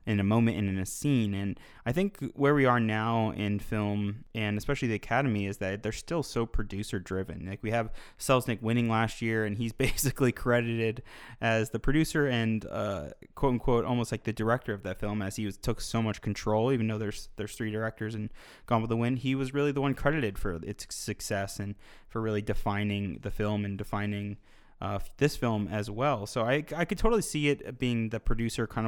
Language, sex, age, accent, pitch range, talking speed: English, male, 20-39, American, 105-120 Hz, 210 wpm